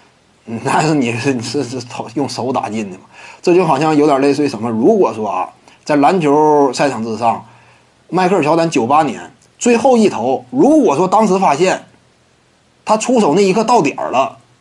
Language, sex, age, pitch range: Chinese, male, 30-49, 170-235 Hz